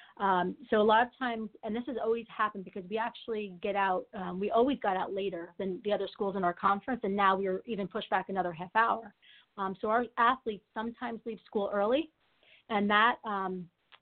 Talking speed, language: 210 wpm, English